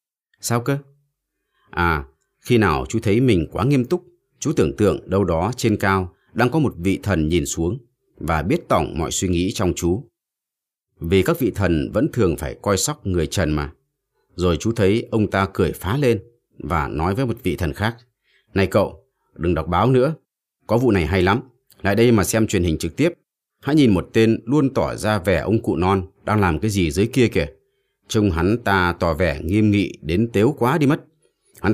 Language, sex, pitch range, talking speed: Vietnamese, male, 85-115 Hz, 210 wpm